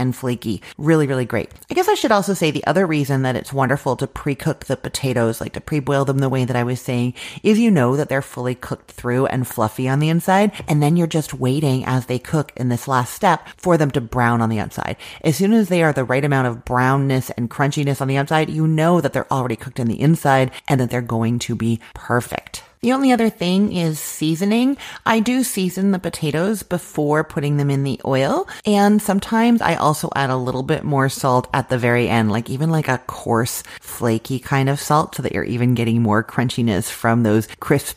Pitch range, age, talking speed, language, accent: 125-165 Hz, 30-49, 230 wpm, English, American